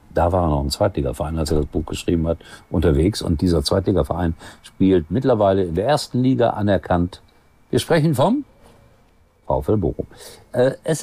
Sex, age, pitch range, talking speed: male, 50-69, 80-115 Hz, 165 wpm